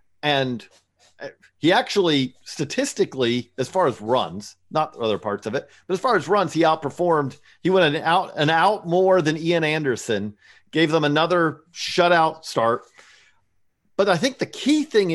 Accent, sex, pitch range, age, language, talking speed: American, male, 130-175 Hz, 50-69, English, 155 wpm